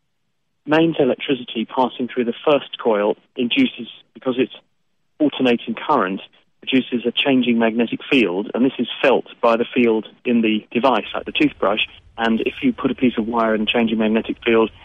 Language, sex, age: English, male, 40-59